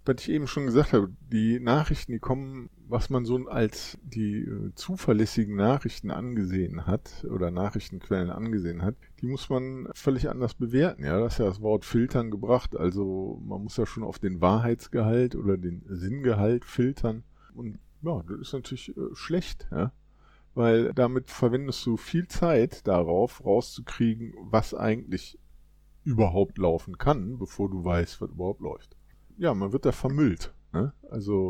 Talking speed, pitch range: 160 wpm, 100-125 Hz